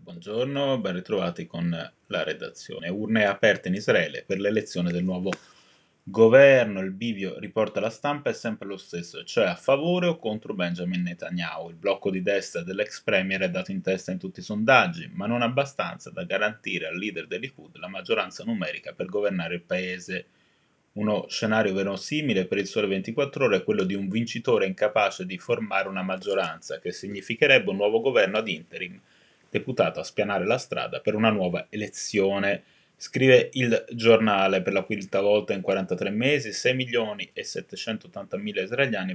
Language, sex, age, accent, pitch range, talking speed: Italian, male, 30-49, native, 95-135 Hz, 160 wpm